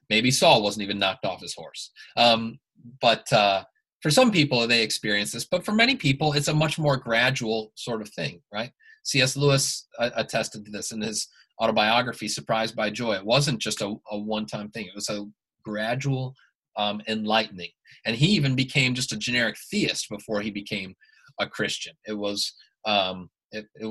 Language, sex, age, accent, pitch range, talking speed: English, male, 30-49, American, 110-160 Hz, 175 wpm